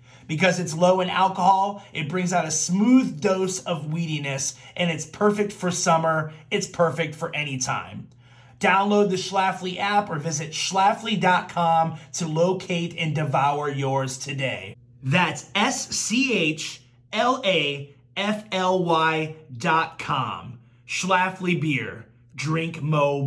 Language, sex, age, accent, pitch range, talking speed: English, male, 30-49, American, 135-185 Hz, 115 wpm